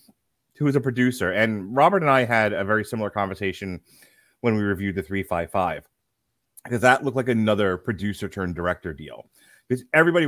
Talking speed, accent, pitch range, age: 160 wpm, American, 95-125 Hz, 30-49